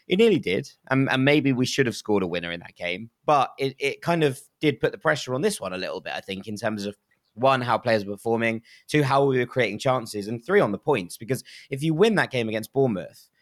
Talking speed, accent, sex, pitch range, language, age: 265 wpm, British, male, 105-135 Hz, English, 20-39